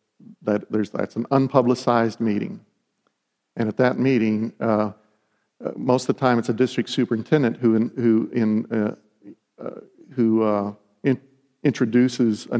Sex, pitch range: male, 110-125 Hz